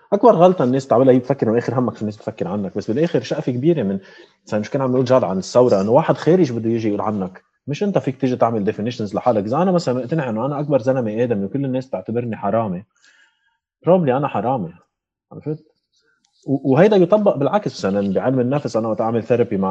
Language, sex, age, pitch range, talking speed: Arabic, male, 30-49, 125-200 Hz, 205 wpm